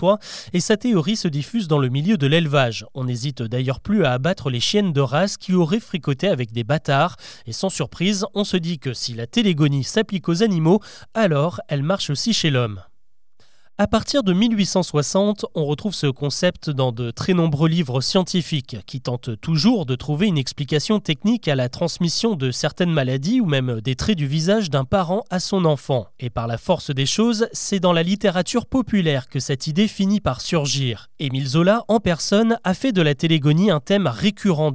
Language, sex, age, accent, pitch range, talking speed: French, male, 30-49, French, 140-200 Hz, 195 wpm